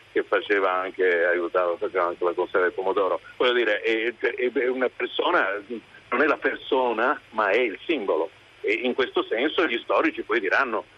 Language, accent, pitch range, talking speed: Italian, native, 345-465 Hz, 175 wpm